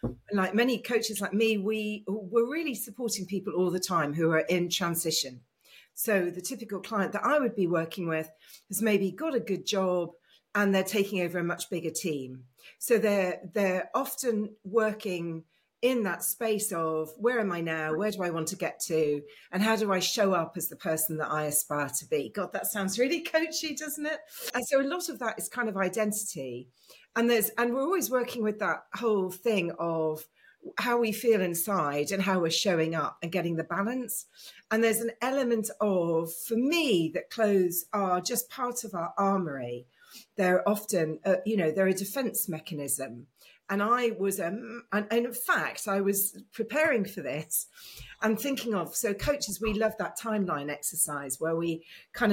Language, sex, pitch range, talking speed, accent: English, female, 165-225 Hz, 190 wpm, British